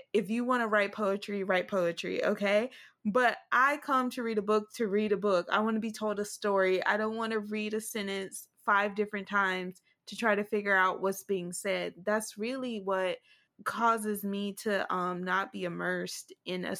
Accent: American